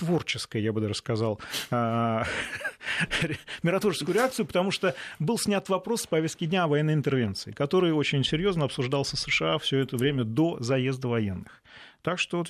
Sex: male